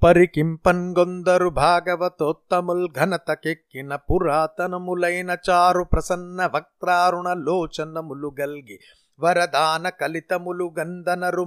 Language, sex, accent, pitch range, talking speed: Telugu, male, native, 155-180 Hz, 50 wpm